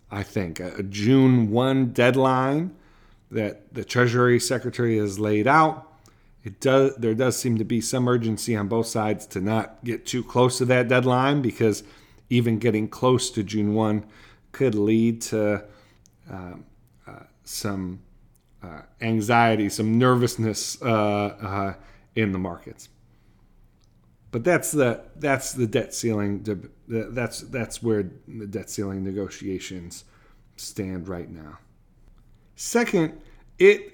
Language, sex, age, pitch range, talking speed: English, male, 40-59, 105-130 Hz, 135 wpm